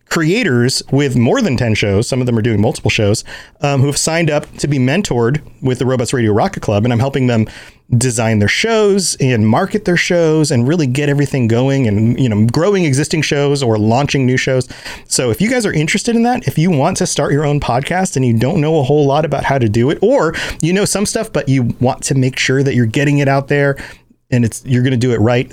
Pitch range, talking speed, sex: 120-150 Hz, 250 wpm, male